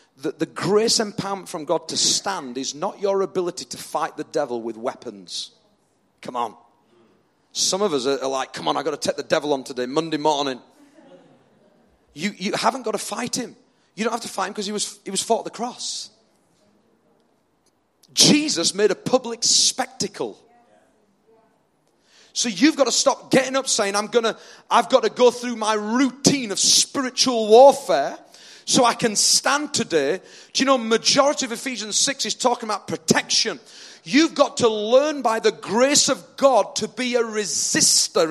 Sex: male